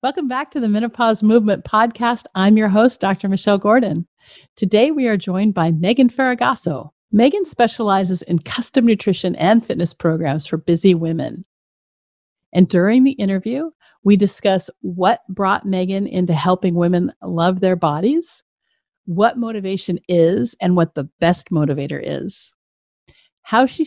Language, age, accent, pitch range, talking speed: English, 50-69, American, 170-230 Hz, 145 wpm